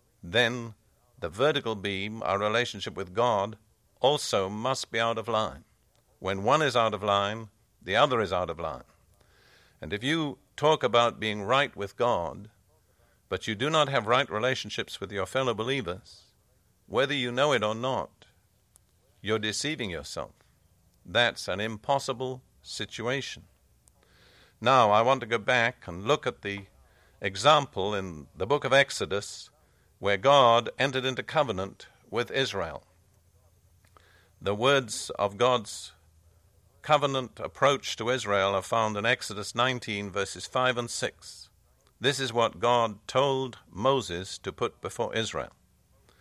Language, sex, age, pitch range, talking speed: English, male, 50-69, 100-130 Hz, 140 wpm